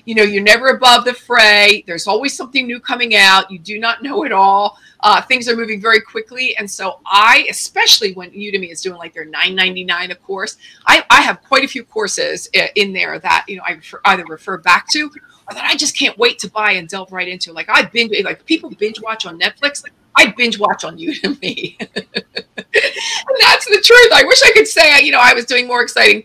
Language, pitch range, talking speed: English, 195-275 Hz, 225 wpm